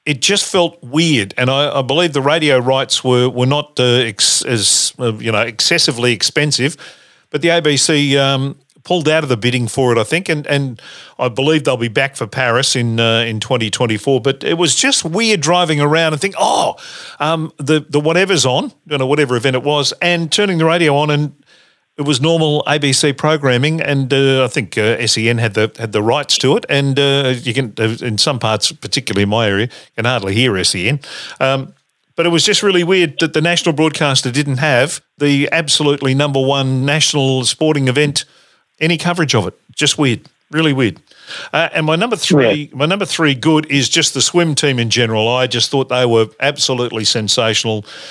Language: English